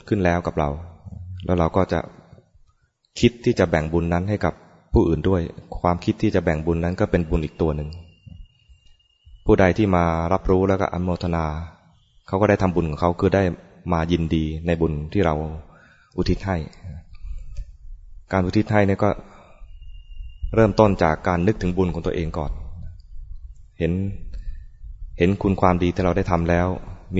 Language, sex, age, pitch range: English, male, 20-39, 80-95 Hz